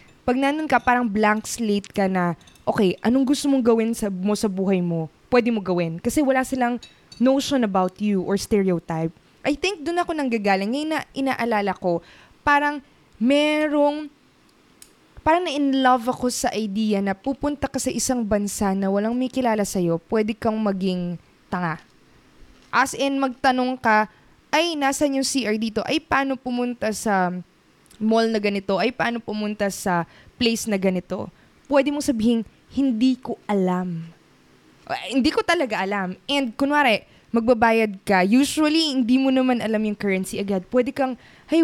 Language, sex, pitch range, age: Filipino, female, 200-270 Hz, 20-39